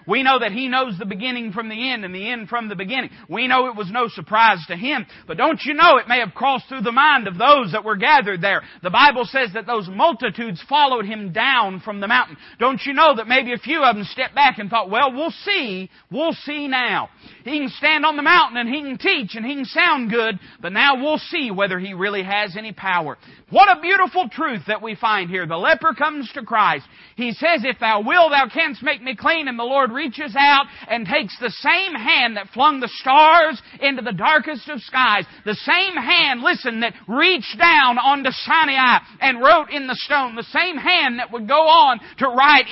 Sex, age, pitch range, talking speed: male, 40-59, 220-300 Hz, 230 wpm